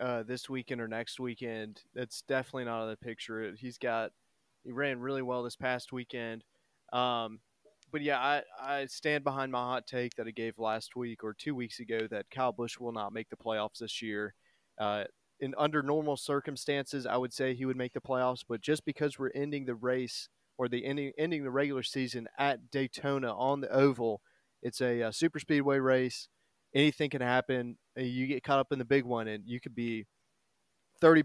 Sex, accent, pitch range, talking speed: male, American, 120-140 Hz, 200 wpm